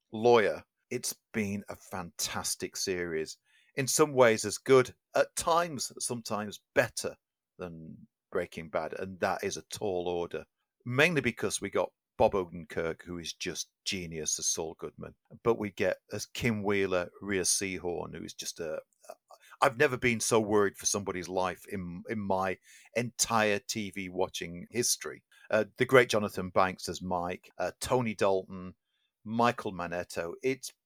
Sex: male